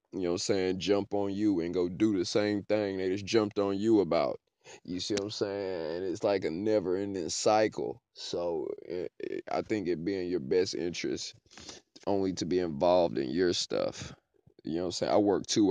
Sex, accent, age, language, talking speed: male, American, 20-39, English, 210 wpm